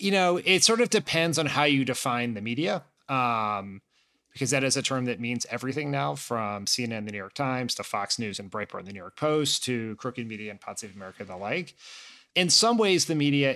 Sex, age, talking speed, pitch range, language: male, 30-49, 225 wpm, 115-145 Hz, English